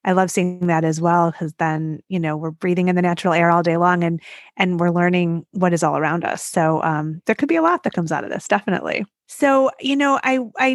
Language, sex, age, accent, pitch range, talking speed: English, female, 30-49, American, 175-200 Hz, 255 wpm